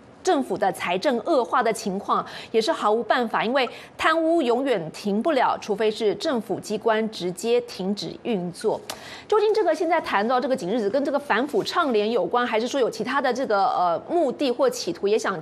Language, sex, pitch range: Chinese, female, 225-315 Hz